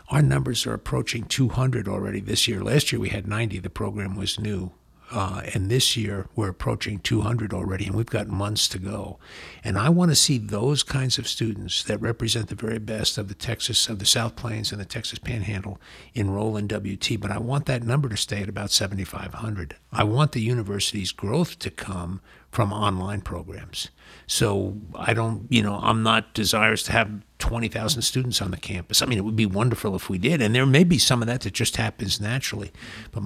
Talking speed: 205 wpm